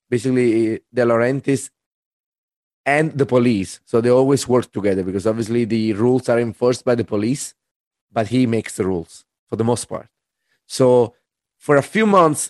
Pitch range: 120-140 Hz